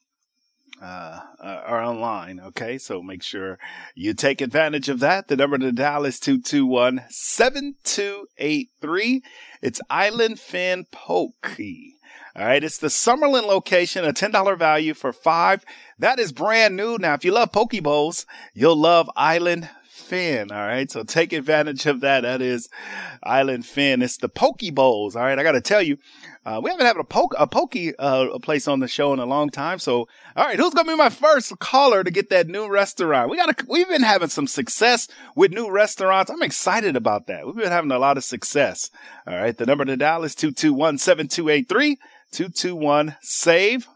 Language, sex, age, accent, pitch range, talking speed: English, male, 30-49, American, 140-235 Hz, 180 wpm